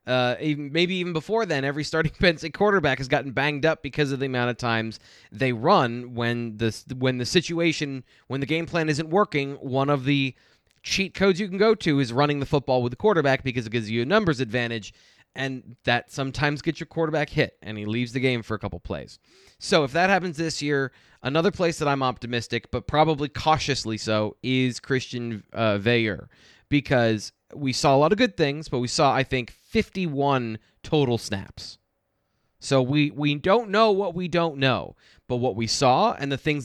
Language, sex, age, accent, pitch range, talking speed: English, male, 20-39, American, 120-160 Hz, 205 wpm